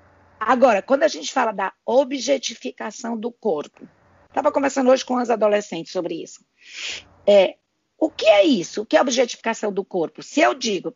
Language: Portuguese